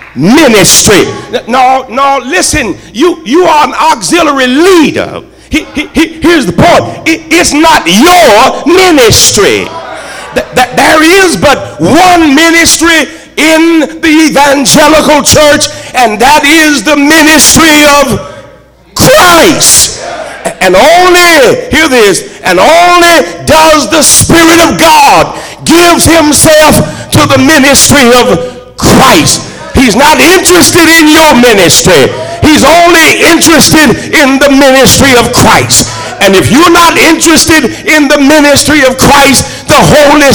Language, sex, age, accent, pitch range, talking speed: English, male, 50-69, American, 275-325 Hz, 125 wpm